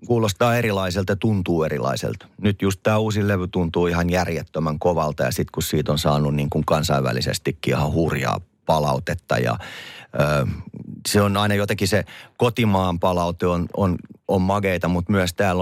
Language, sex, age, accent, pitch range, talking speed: Finnish, male, 30-49, native, 80-105 Hz, 160 wpm